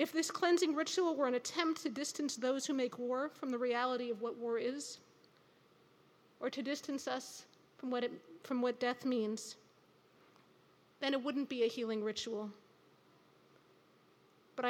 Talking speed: 160 wpm